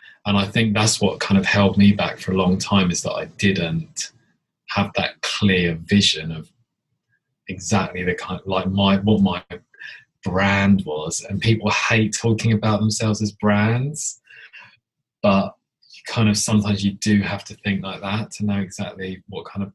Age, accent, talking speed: 20-39, British, 175 wpm